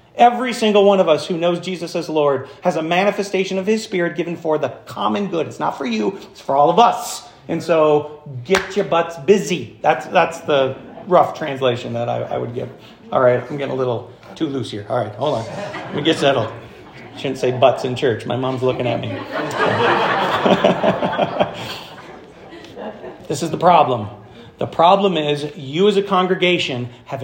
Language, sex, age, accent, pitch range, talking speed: English, male, 40-59, American, 130-190 Hz, 190 wpm